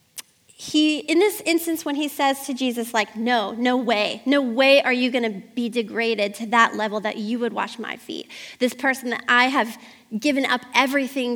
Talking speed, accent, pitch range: 195 wpm, American, 235-280 Hz